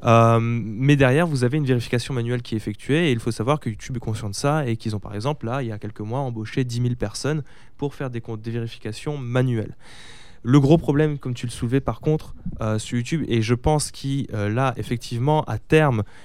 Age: 20-39